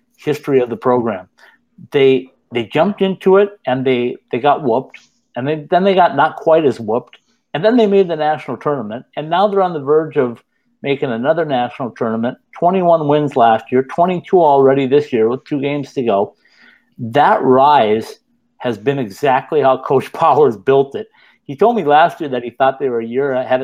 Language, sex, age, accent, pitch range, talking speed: English, male, 50-69, American, 125-165 Hz, 195 wpm